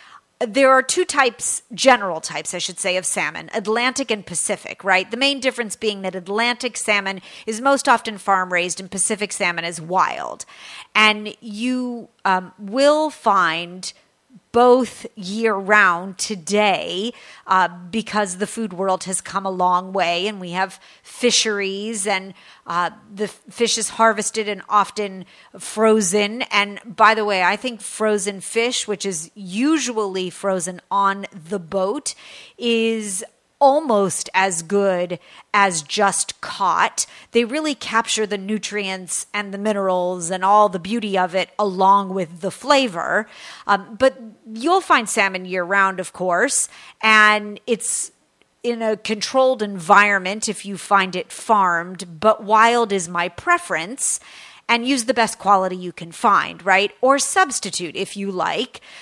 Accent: American